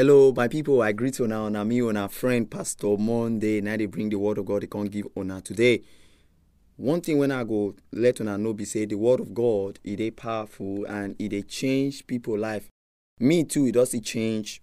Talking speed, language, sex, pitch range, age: 225 wpm, English, male, 95-130 Hz, 20-39